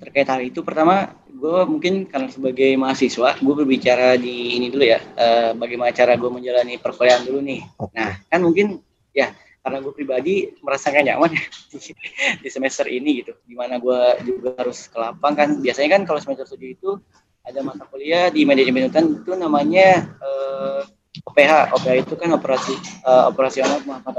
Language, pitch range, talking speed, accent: Indonesian, 125-150 Hz, 170 wpm, native